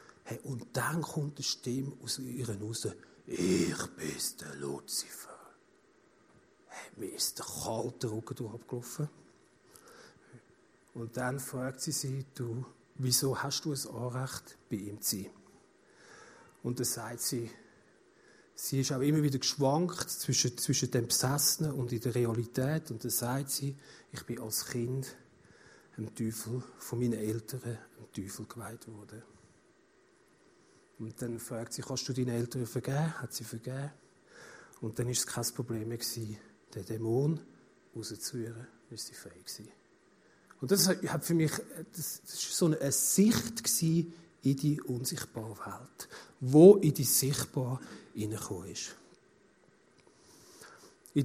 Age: 50-69